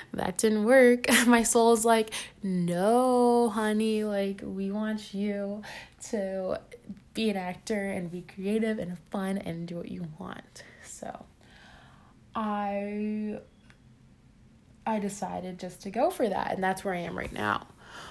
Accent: American